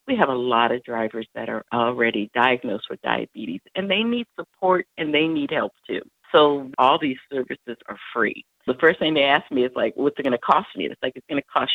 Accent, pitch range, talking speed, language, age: American, 125-180 Hz, 240 wpm, English, 50-69